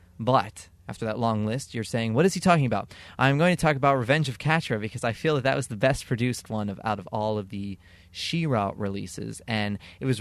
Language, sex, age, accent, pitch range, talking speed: English, male, 20-39, American, 100-125 Hz, 240 wpm